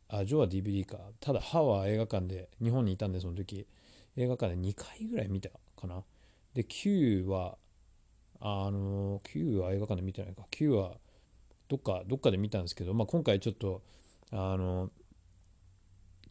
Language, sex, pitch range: Japanese, male, 90-110 Hz